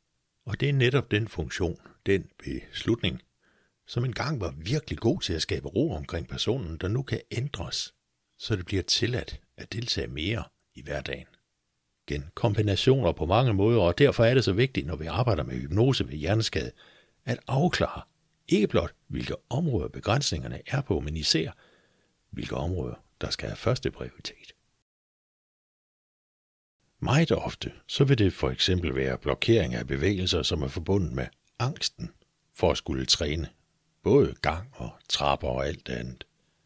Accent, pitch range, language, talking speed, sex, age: native, 80-115 Hz, Danish, 155 wpm, male, 60-79